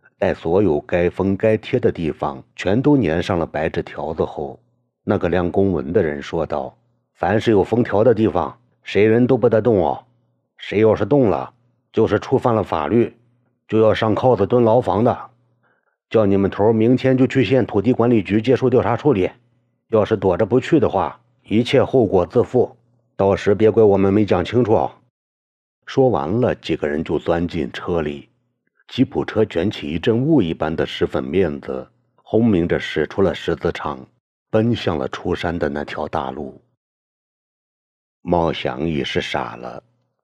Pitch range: 85-120 Hz